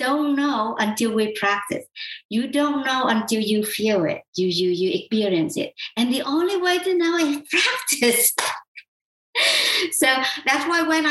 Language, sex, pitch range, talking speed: English, male, 175-235 Hz, 155 wpm